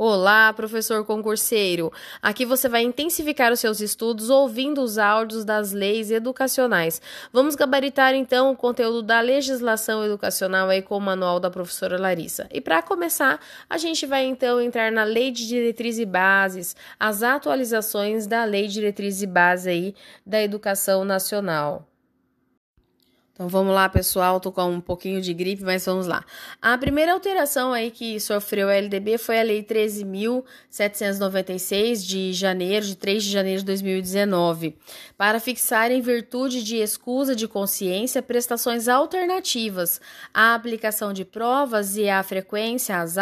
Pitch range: 195-255 Hz